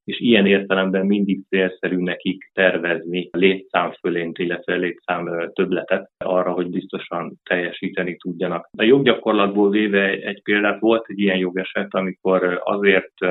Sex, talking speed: male, 130 wpm